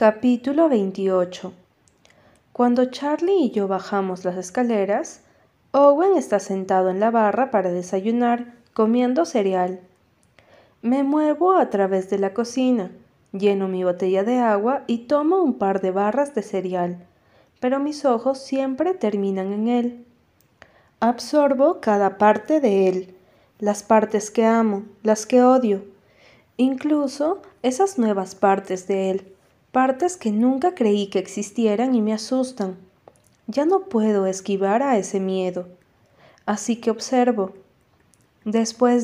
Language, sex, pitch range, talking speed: Spanish, female, 195-255 Hz, 130 wpm